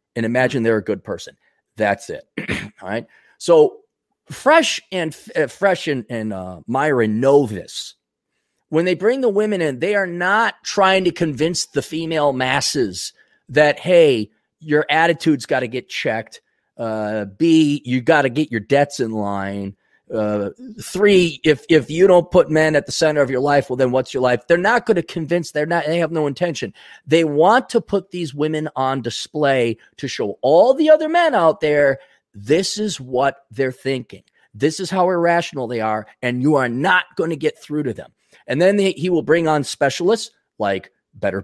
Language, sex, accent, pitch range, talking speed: English, male, American, 135-190 Hz, 190 wpm